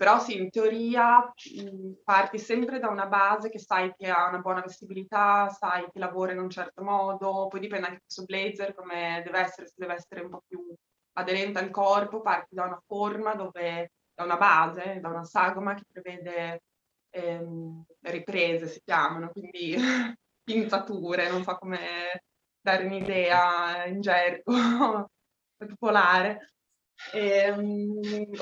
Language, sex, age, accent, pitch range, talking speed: Italian, female, 20-39, native, 180-200 Hz, 150 wpm